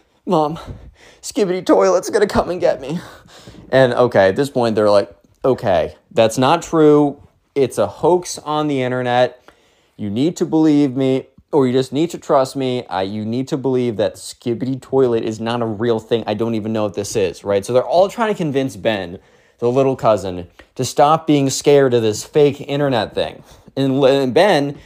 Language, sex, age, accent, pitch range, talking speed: English, male, 20-39, American, 110-150 Hz, 185 wpm